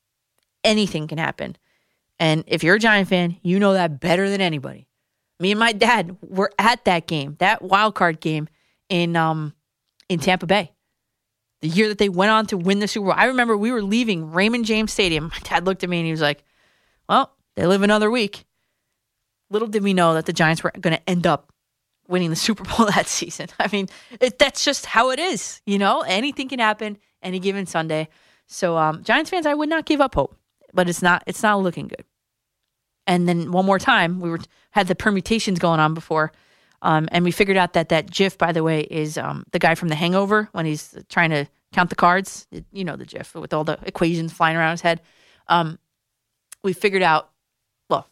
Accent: American